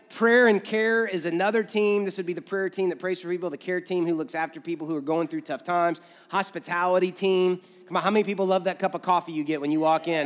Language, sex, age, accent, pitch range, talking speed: English, male, 30-49, American, 175-215 Hz, 275 wpm